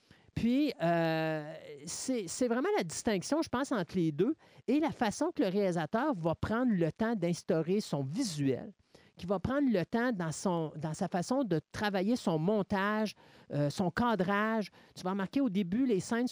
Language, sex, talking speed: French, male, 175 wpm